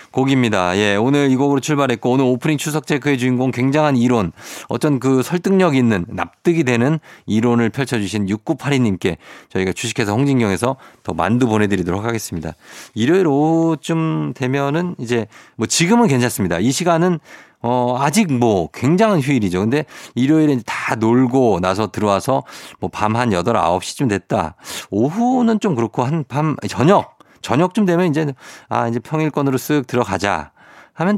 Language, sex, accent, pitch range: Korean, male, native, 105-155 Hz